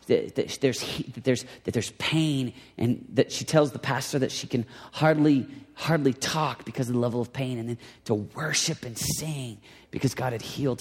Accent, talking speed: American, 195 wpm